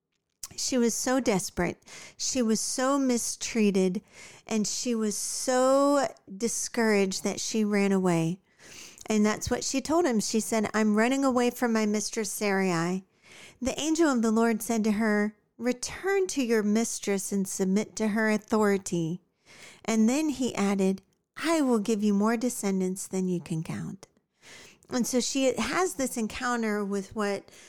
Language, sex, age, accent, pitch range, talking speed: English, female, 40-59, American, 200-250 Hz, 155 wpm